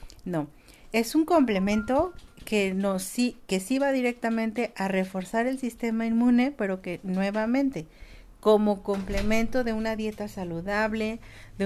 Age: 40-59